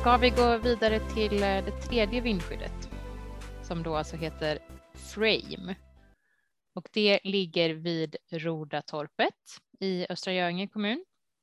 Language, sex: Swedish, female